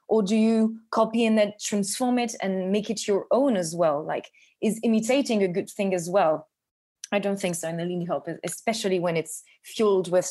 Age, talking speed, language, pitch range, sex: 20-39, 210 wpm, English, 185-225 Hz, female